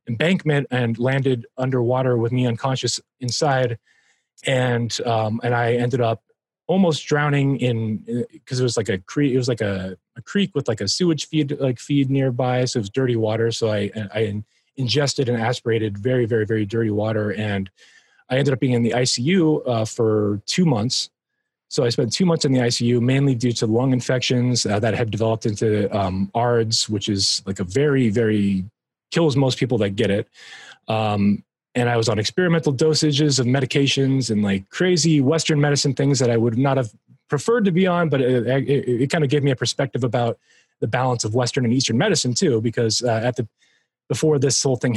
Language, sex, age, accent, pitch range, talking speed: English, male, 30-49, American, 115-140 Hz, 195 wpm